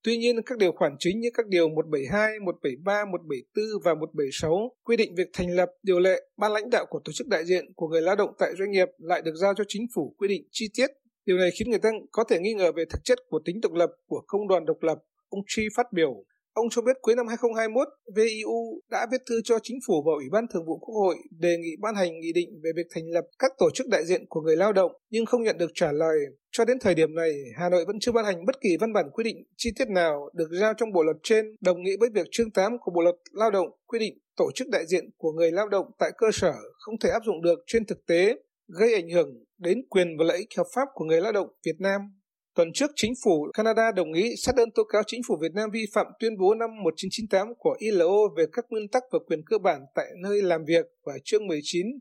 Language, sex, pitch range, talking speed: Vietnamese, male, 175-235 Hz, 265 wpm